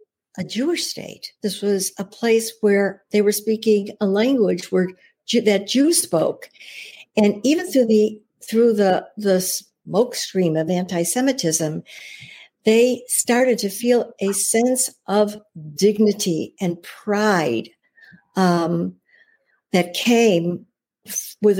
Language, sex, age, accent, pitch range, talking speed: English, female, 60-79, American, 190-240 Hz, 115 wpm